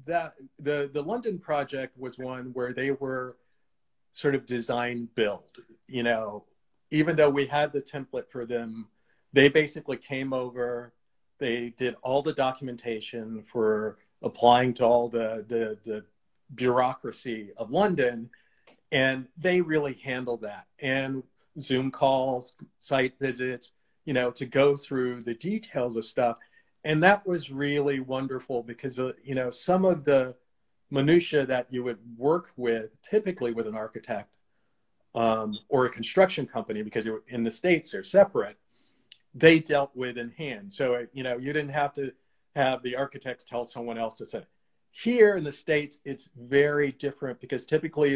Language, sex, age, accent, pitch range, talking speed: English, male, 40-59, American, 120-145 Hz, 155 wpm